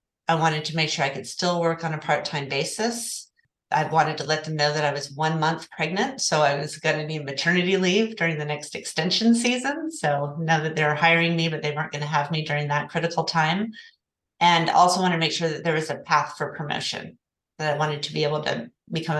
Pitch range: 150-180 Hz